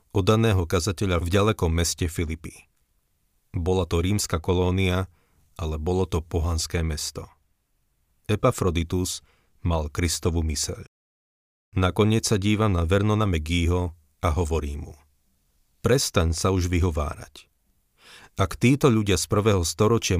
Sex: male